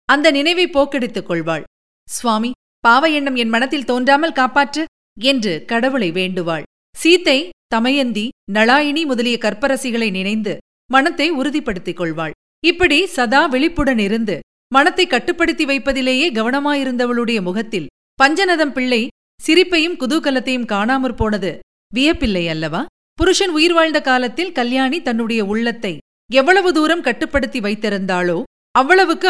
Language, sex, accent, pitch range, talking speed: Tamil, female, native, 215-300 Hz, 100 wpm